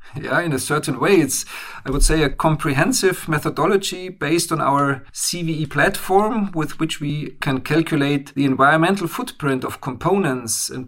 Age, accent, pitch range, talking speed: 40-59, German, 135-165 Hz, 155 wpm